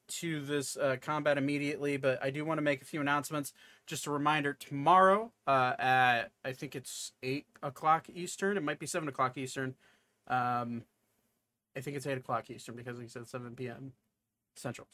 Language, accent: English, American